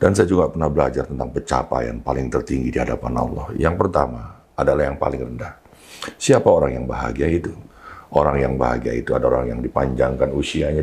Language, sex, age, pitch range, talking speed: Indonesian, male, 50-69, 70-80 Hz, 175 wpm